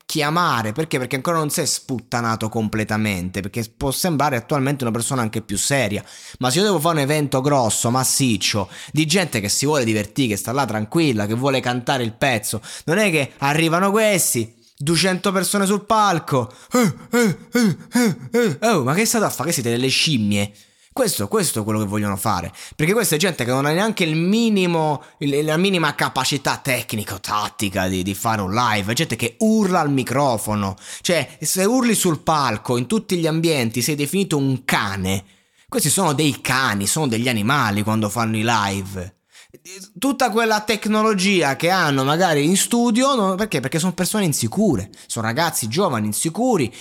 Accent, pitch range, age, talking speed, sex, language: native, 115-180 Hz, 20-39, 180 wpm, male, Italian